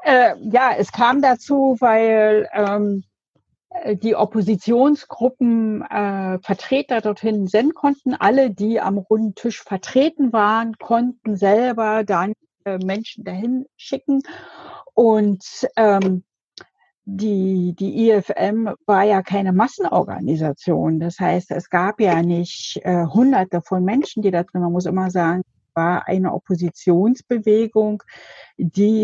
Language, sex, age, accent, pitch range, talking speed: German, female, 50-69, German, 185-230 Hz, 120 wpm